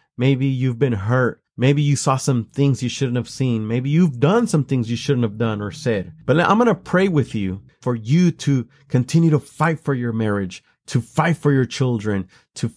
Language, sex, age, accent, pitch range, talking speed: English, male, 30-49, American, 125-160 Hz, 215 wpm